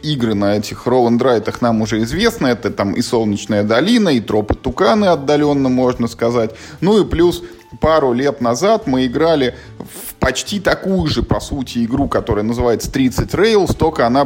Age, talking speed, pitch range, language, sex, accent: 20-39, 165 wpm, 110-130 Hz, Russian, male, native